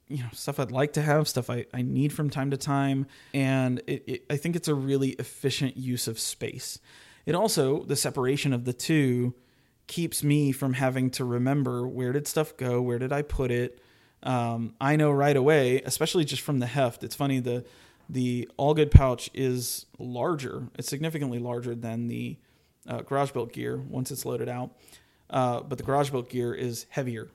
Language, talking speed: English, 195 wpm